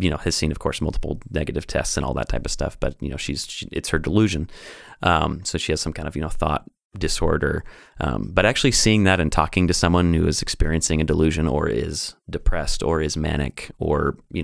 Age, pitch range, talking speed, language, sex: 30-49, 75-90 Hz, 230 wpm, English, male